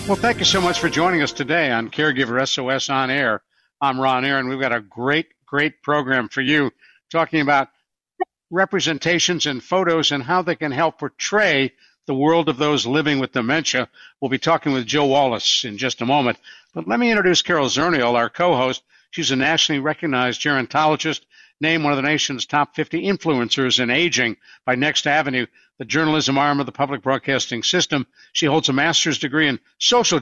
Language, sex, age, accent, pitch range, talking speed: English, male, 60-79, American, 135-165 Hz, 185 wpm